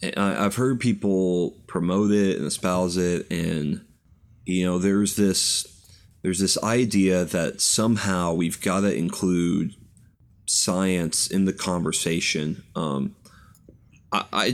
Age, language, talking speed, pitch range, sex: 30-49, English, 120 wpm, 95-110 Hz, male